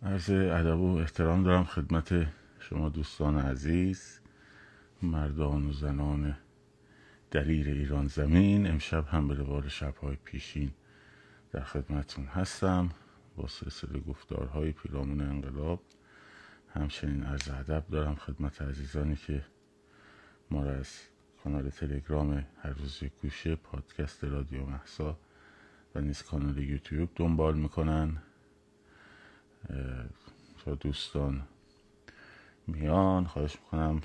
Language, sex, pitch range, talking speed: Persian, male, 70-85 Hz, 100 wpm